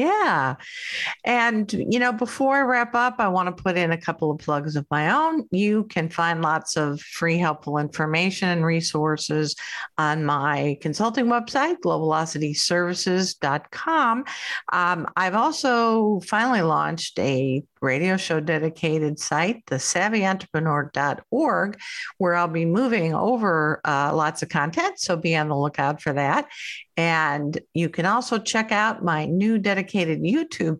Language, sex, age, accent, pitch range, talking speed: English, female, 50-69, American, 155-220 Hz, 140 wpm